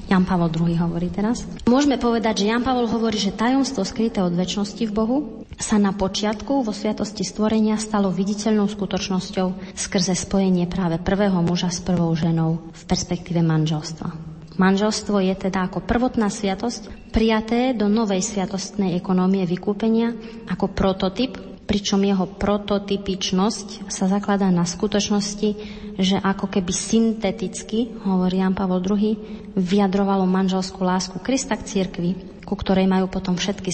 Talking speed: 140 wpm